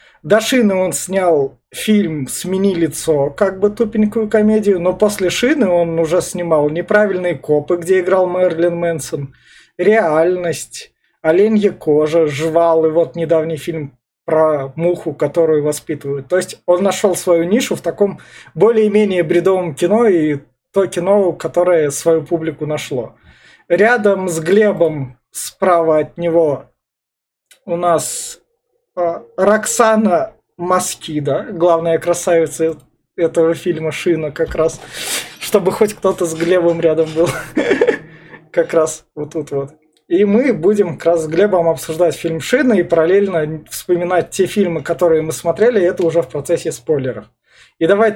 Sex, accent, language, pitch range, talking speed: male, native, Russian, 160-200 Hz, 135 wpm